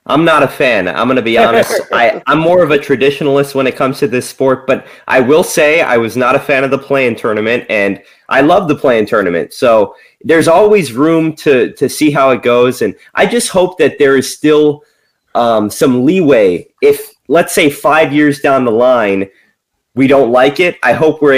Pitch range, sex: 130-170 Hz, male